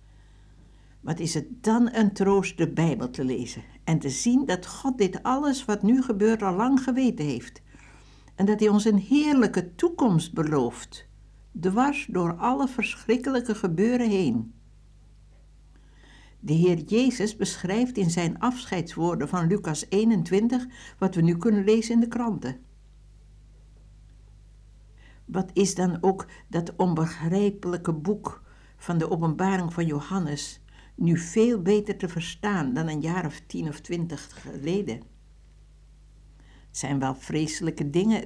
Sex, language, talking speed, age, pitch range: female, Dutch, 135 wpm, 60-79, 155-215 Hz